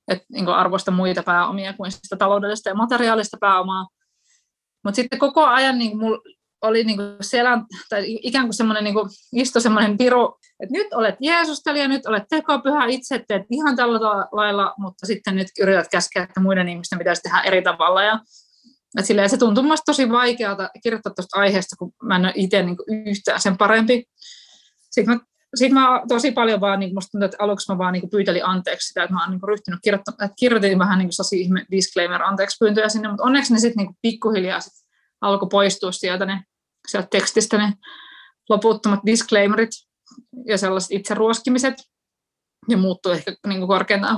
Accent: native